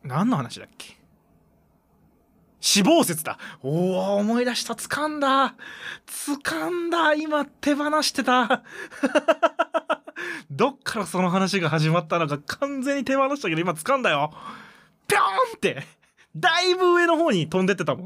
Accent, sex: native, male